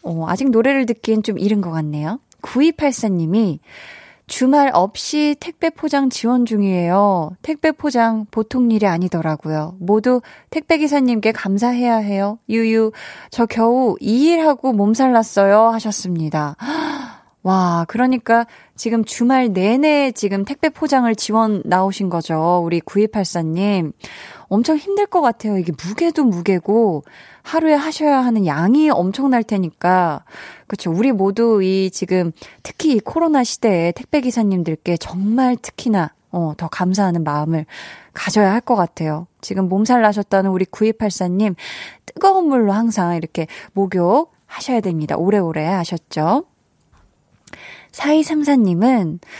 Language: Korean